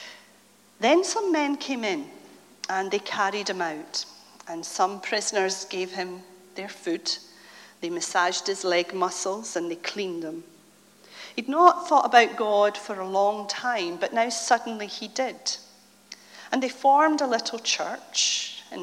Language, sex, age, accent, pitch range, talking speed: English, female, 40-59, British, 190-250 Hz, 150 wpm